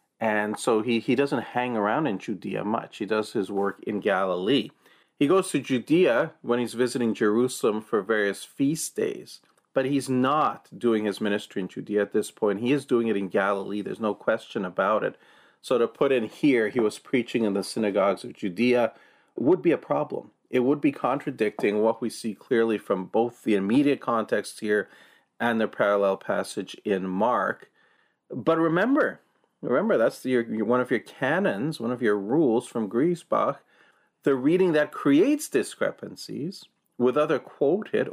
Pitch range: 110-150 Hz